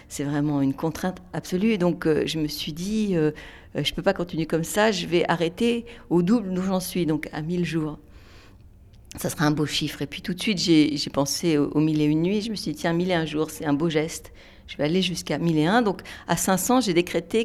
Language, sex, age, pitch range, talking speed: French, female, 50-69, 160-195 Hz, 260 wpm